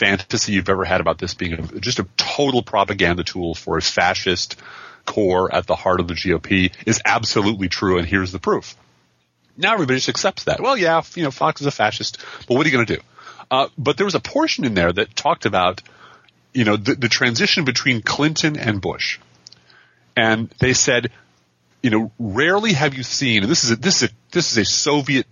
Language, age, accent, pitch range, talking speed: English, 30-49, American, 90-125 Hz, 215 wpm